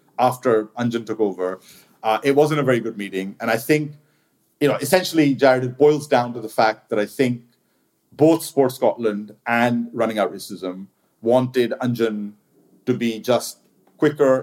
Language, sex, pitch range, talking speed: English, male, 110-130 Hz, 165 wpm